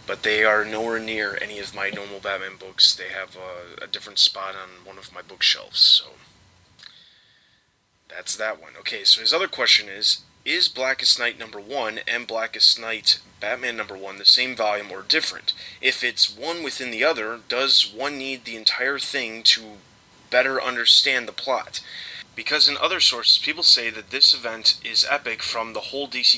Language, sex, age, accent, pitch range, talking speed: English, male, 20-39, American, 100-120 Hz, 180 wpm